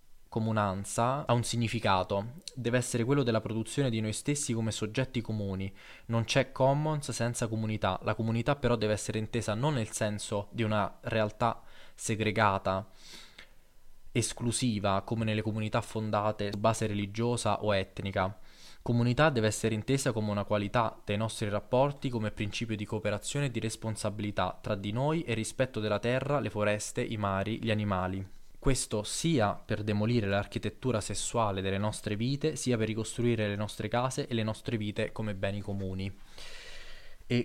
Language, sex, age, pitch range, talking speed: Italian, male, 20-39, 105-120 Hz, 155 wpm